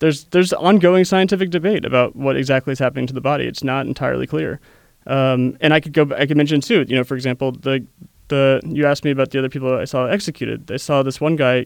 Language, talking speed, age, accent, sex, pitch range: English, 245 wpm, 30-49, American, male, 130-150 Hz